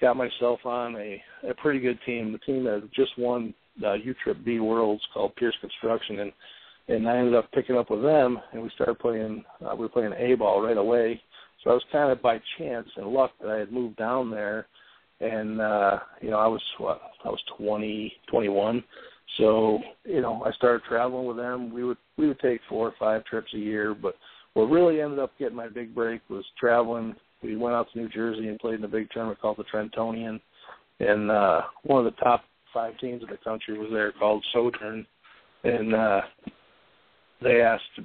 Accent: American